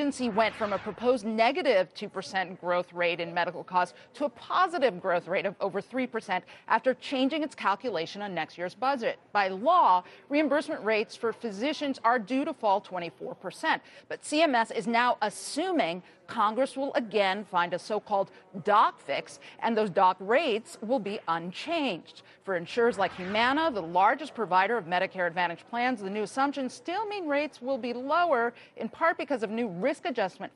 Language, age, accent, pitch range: Korean, 40-59, American, 185-260 Hz